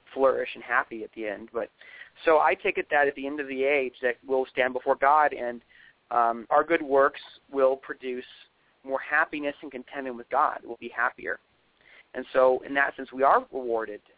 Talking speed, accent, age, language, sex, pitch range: 200 wpm, American, 40-59, English, male, 120-140 Hz